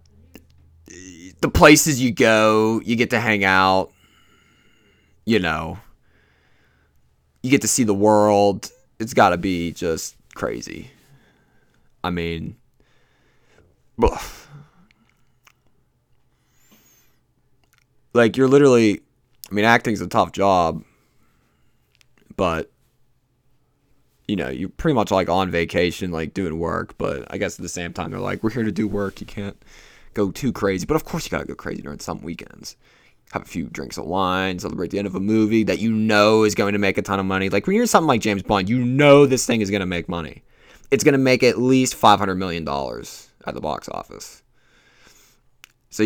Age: 20-39